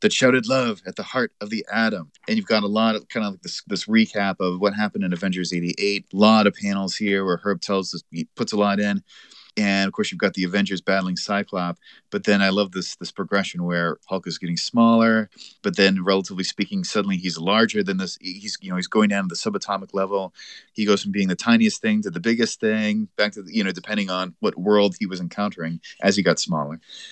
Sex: male